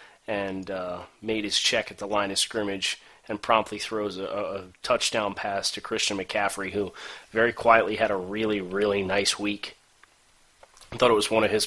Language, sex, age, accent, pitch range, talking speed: English, male, 30-49, American, 100-115 Hz, 185 wpm